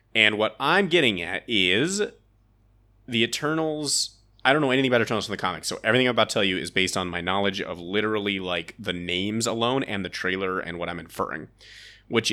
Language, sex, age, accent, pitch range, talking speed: English, male, 30-49, American, 90-110 Hz, 215 wpm